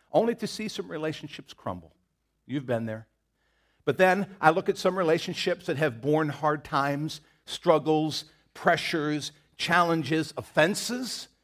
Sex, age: male, 50-69